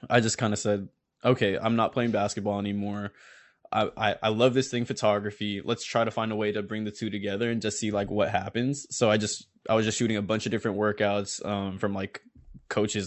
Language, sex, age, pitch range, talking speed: English, male, 20-39, 100-110 Hz, 235 wpm